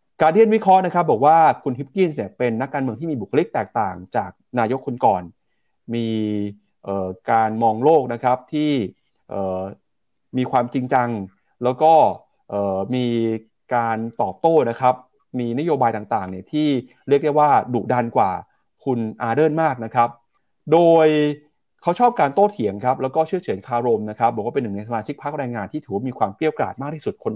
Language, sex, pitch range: Thai, male, 110-150 Hz